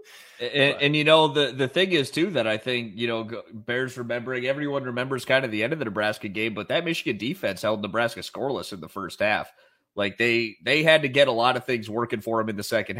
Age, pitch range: 30-49, 115-140 Hz